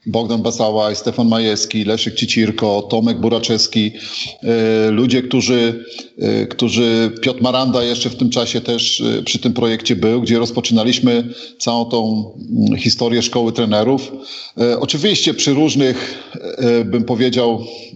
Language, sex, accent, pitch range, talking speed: Polish, male, native, 115-125 Hz, 115 wpm